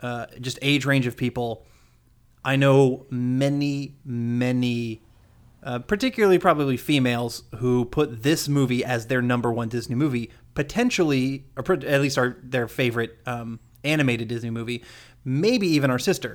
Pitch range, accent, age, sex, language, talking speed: 120-145 Hz, American, 30-49, male, English, 145 wpm